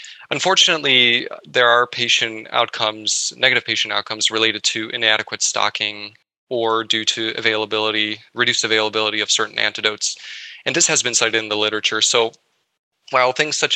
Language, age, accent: English, 20-39, American